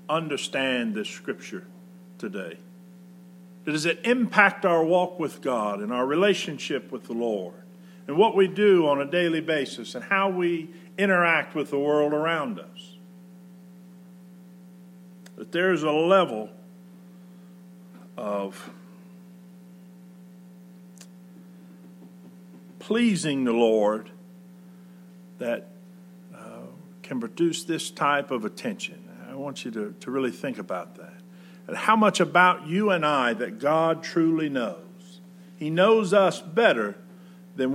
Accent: American